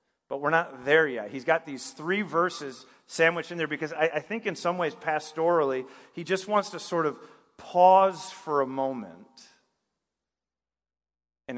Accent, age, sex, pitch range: American, 40-59, male, 135-170 Hz